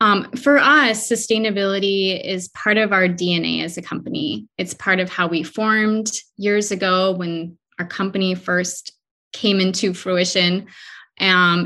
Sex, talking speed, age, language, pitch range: female, 145 wpm, 20-39, English, 180-215 Hz